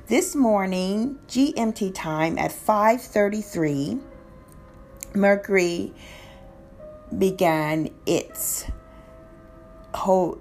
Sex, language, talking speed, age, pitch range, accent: female, English, 60 wpm, 40-59, 170-225 Hz, American